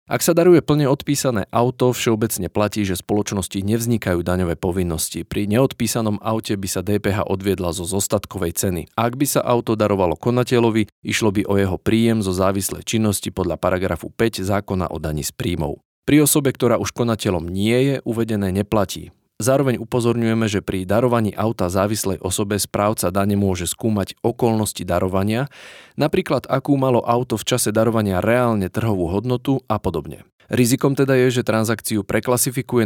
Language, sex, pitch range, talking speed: Slovak, male, 95-120 Hz, 155 wpm